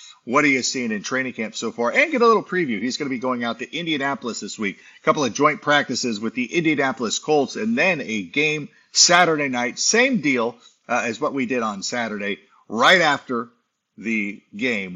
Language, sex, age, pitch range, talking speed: English, male, 50-69, 115-150 Hz, 210 wpm